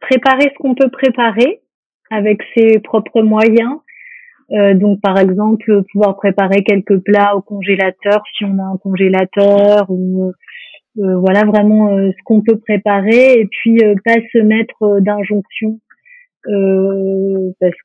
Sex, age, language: female, 30-49, French